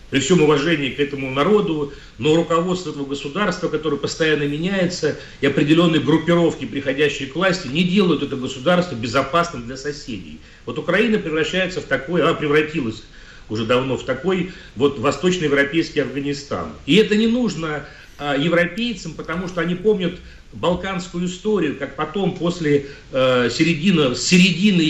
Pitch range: 135-170 Hz